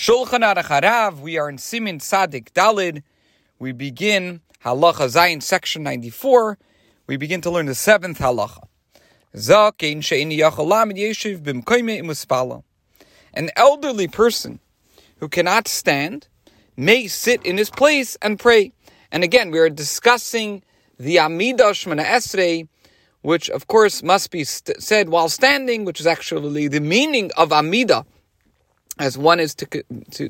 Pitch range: 150-225 Hz